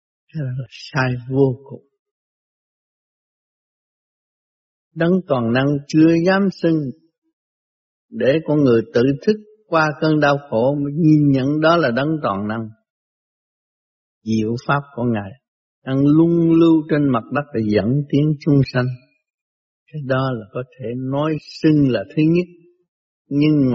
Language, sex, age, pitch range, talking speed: Vietnamese, male, 60-79, 120-155 Hz, 135 wpm